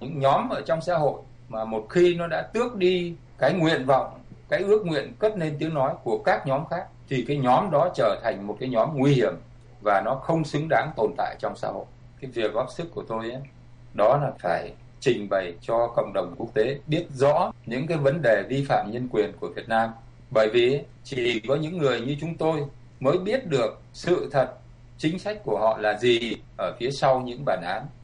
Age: 20-39